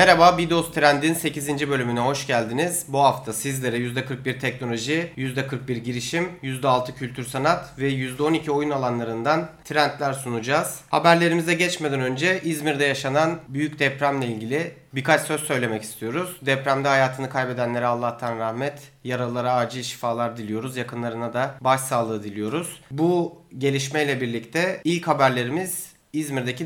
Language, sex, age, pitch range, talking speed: Turkish, male, 40-59, 125-165 Hz, 120 wpm